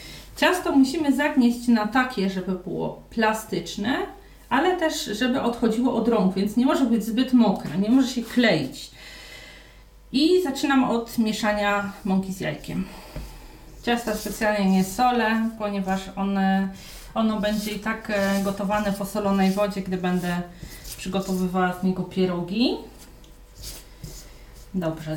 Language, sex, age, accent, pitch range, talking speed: Polish, female, 30-49, native, 190-225 Hz, 125 wpm